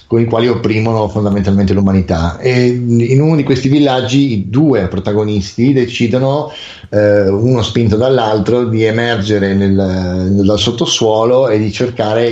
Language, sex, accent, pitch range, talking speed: Italian, male, native, 100-120 Hz, 130 wpm